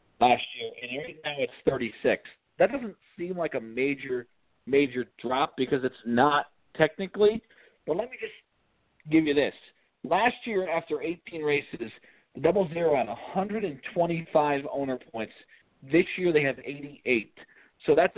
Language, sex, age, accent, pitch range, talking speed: English, male, 40-59, American, 130-175 Hz, 150 wpm